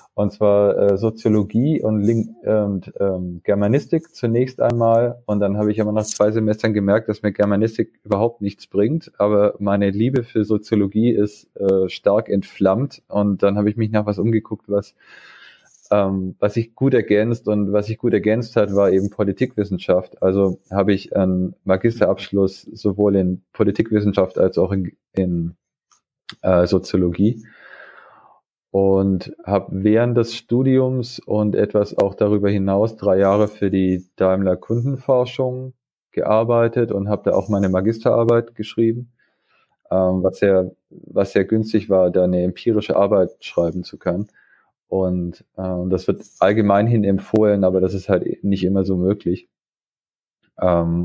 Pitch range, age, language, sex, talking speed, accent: 95-110 Hz, 30-49, German, male, 150 wpm, German